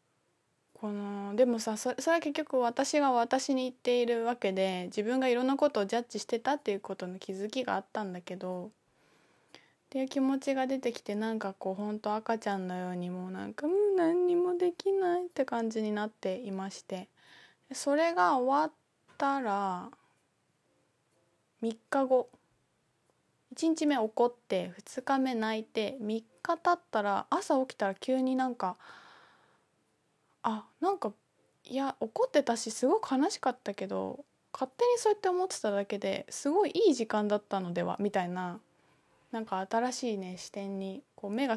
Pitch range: 200-265 Hz